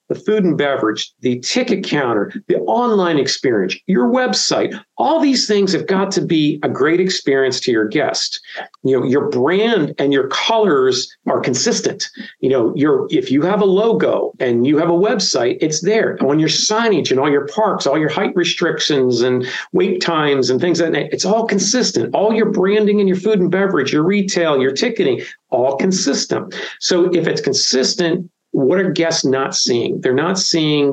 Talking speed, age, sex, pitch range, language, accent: 185 wpm, 50-69, male, 145-215 Hz, English, American